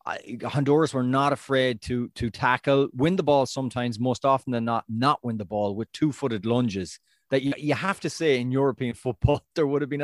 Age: 30-49